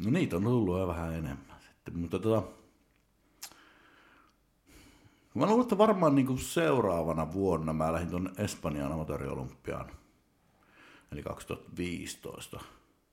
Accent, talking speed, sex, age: native, 105 wpm, male, 60-79